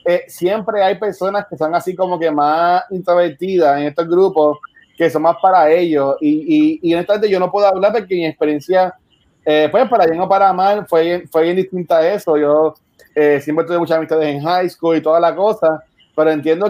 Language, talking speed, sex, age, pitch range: Spanish, 205 wpm, male, 30-49, 160-190 Hz